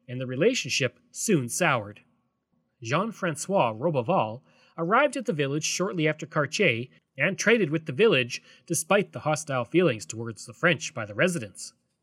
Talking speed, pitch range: 145 wpm, 130-185 Hz